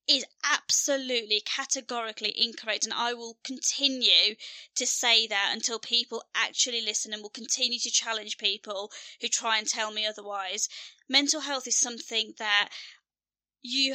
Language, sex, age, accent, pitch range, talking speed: English, female, 20-39, British, 220-260 Hz, 140 wpm